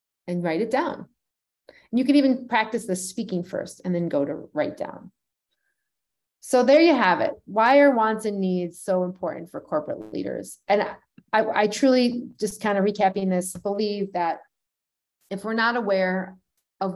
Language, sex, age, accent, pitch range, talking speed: English, female, 30-49, American, 180-225 Hz, 175 wpm